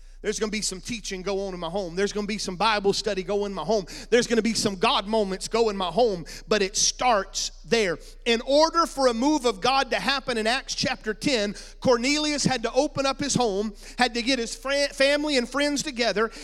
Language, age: English, 40-59